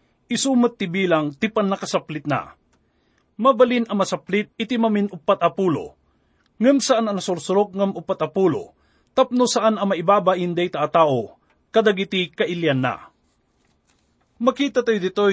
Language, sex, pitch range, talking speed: English, male, 165-220 Hz, 115 wpm